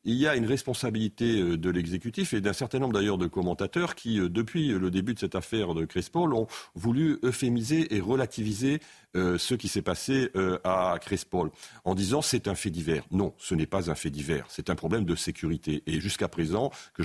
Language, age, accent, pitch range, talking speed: French, 50-69, French, 90-125 Hz, 195 wpm